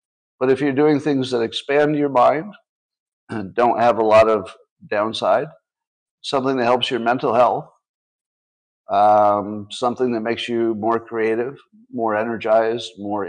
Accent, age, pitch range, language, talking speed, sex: American, 50-69, 110-150 Hz, English, 145 wpm, male